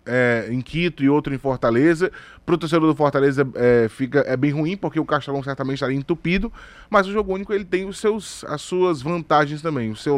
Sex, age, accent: male, 20-39, Brazilian